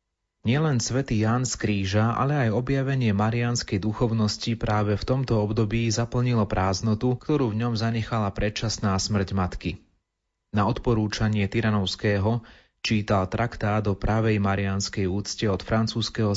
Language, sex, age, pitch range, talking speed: Slovak, male, 30-49, 100-120 Hz, 125 wpm